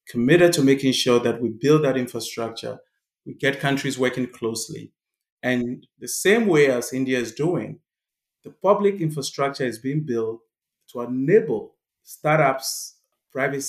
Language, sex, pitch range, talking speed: English, male, 115-140 Hz, 140 wpm